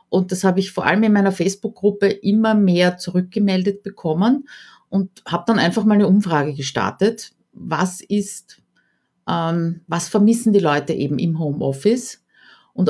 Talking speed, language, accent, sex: 150 wpm, German, Austrian, female